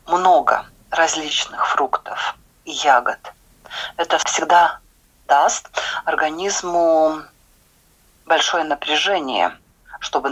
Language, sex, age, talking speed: Russian, female, 40-59, 70 wpm